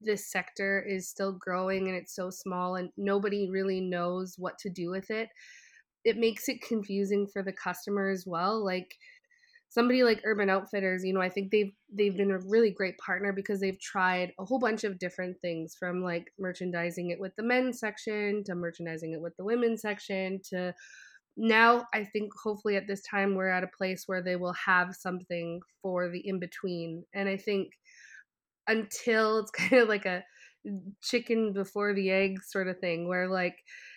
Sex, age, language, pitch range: female, 20-39, English, 180-210 Hz